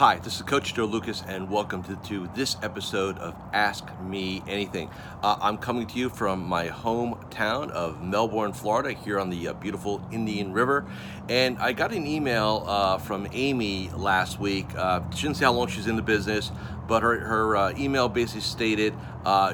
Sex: male